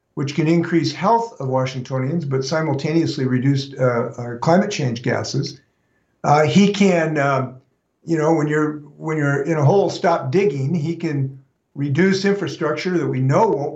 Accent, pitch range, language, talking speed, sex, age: American, 135-170 Hz, English, 155 wpm, male, 50-69